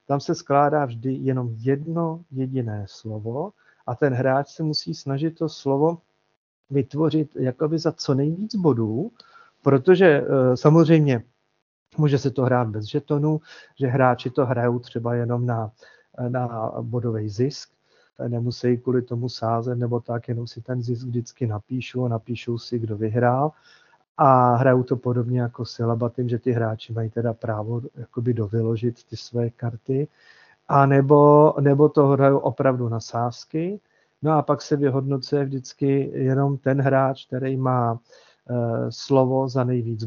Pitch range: 120-140 Hz